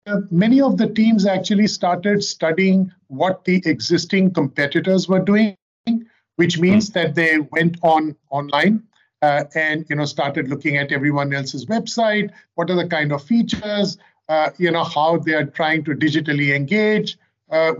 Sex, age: male, 50-69